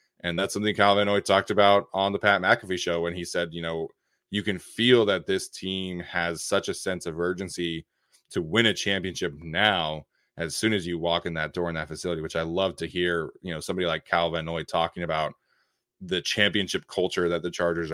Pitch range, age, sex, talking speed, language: 80-95 Hz, 20-39, male, 215 wpm, English